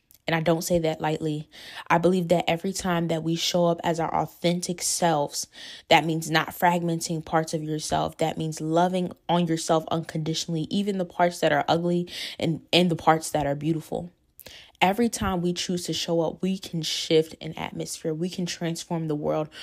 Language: English